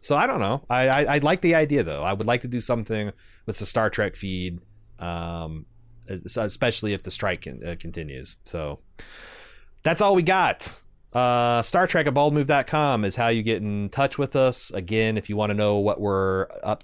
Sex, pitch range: male, 95-125 Hz